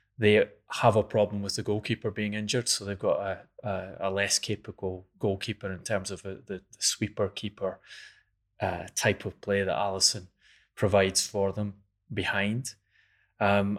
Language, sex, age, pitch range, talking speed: English, male, 20-39, 95-105 Hz, 155 wpm